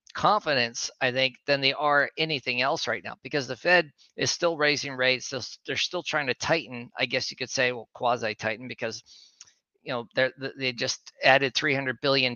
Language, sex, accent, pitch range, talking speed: English, male, American, 125-150 Hz, 180 wpm